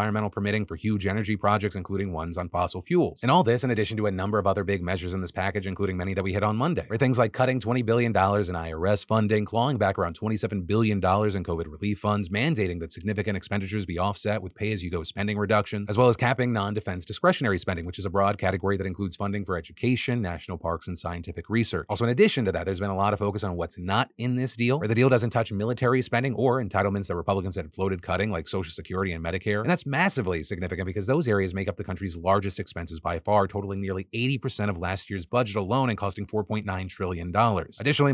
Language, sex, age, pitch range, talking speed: English, male, 30-49, 95-120 Hz, 235 wpm